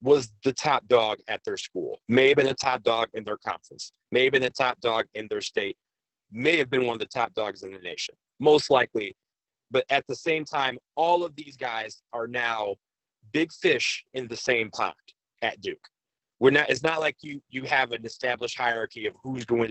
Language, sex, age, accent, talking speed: English, male, 40-59, American, 215 wpm